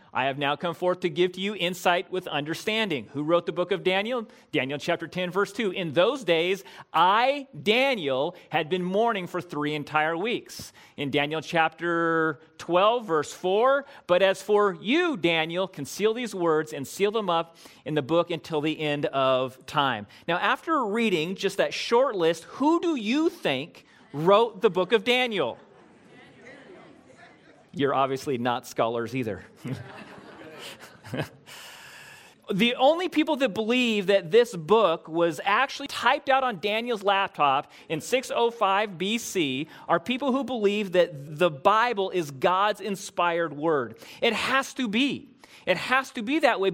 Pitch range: 165-245 Hz